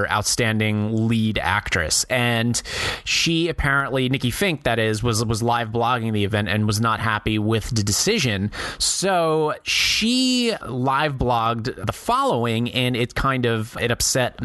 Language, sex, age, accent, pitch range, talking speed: English, male, 30-49, American, 110-155 Hz, 145 wpm